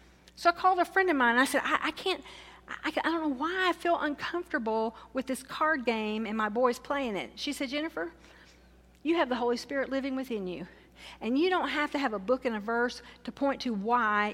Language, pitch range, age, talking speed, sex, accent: English, 200-280 Hz, 50-69, 235 wpm, female, American